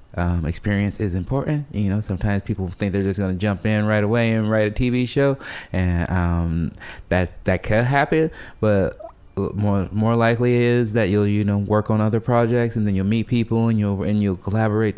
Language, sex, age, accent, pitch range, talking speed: English, male, 30-49, American, 95-115 Hz, 200 wpm